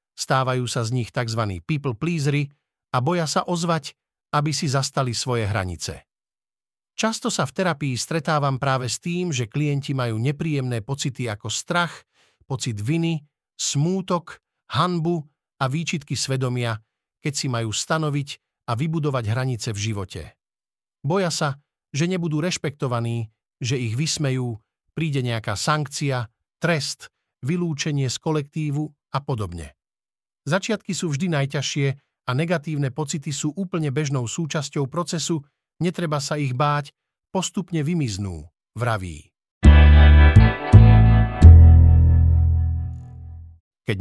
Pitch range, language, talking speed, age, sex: 110-150 Hz, Slovak, 115 wpm, 50-69, male